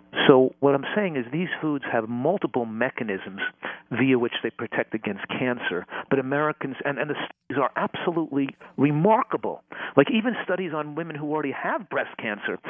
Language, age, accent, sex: English, 50-69, American, male